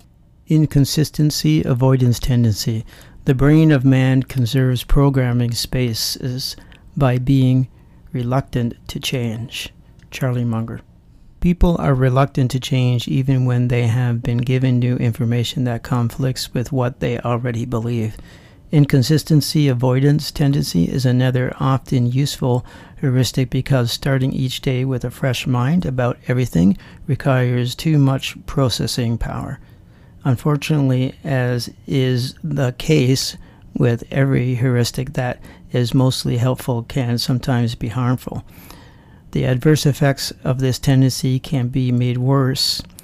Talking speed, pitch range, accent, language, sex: 120 wpm, 120-135 Hz, American, English, male